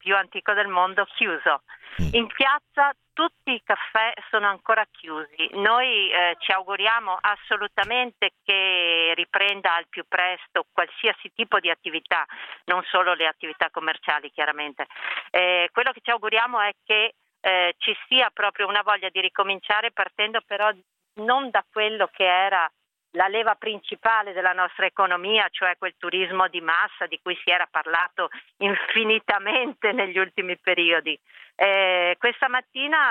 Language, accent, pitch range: Italian, native, 185-220 Hz